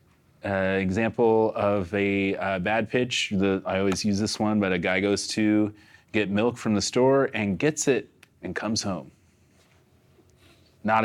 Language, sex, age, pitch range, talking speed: English, male, 30-49, 95-105 Hz, 165 wpm